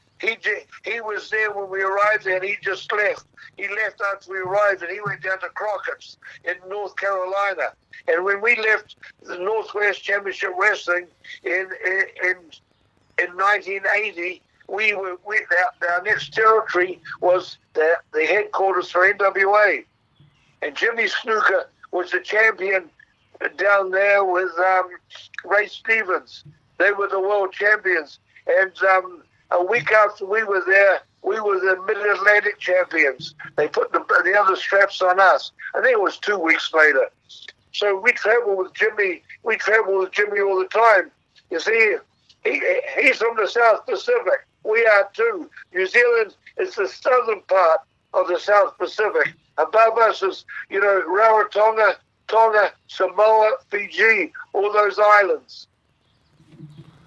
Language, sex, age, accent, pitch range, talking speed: English, male, 60-79, American, 185-220 Hz, 150 wpm